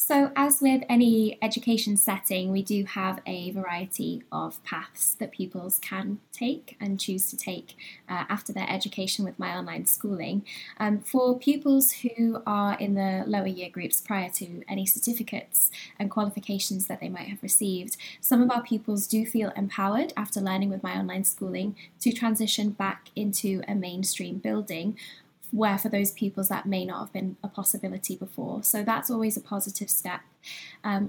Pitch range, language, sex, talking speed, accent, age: 190-220 Hz, English, female, 170 wpm, British, 10-29